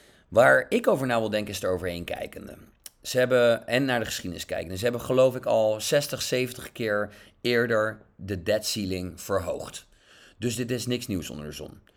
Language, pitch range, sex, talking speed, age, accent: English, 100-140 Hz, male, 190 wpm, 40-59, Dutch